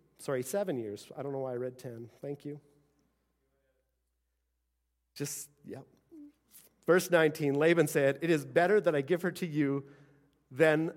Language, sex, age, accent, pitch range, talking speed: English, male, 40-59, American, 125-170 Hz, 155 wpm